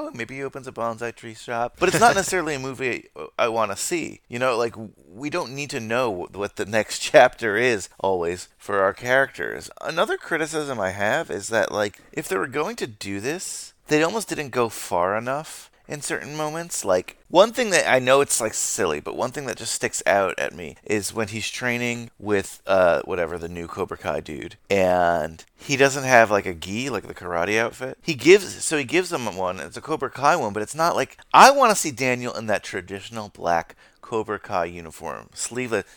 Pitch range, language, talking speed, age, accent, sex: 105-155 Hz, English, 210 wpm, 30-49, American, male